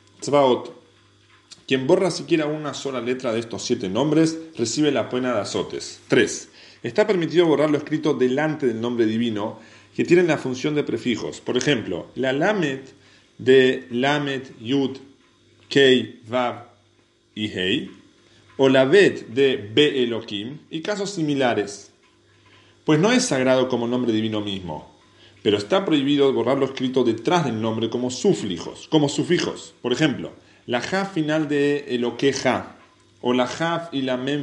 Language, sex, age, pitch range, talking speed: English, male, 40-59, 115-145 Hz, 155 wpm